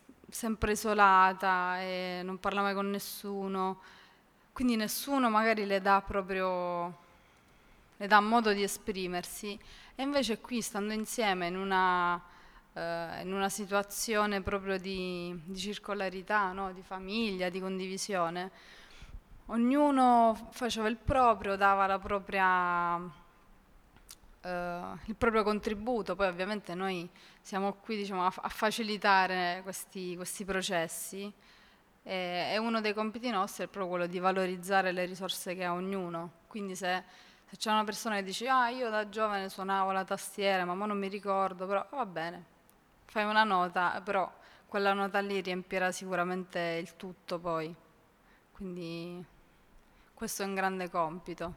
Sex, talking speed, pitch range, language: female, 135 wpm, 180-210 Hz, Italian